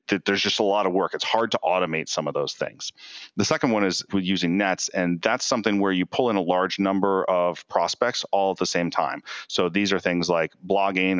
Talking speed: 240 wpm